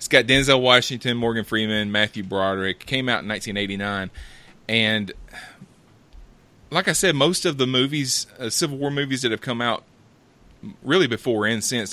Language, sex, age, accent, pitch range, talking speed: English, male, 30-49, American, 105-130 Hz, 160 wpm